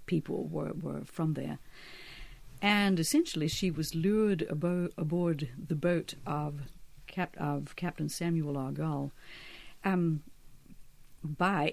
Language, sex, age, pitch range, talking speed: English, female, 50-69, 150-180 Hz, 115 wpm